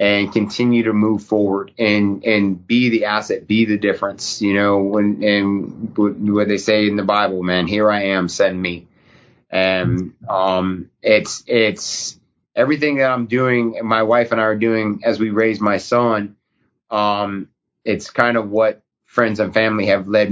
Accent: American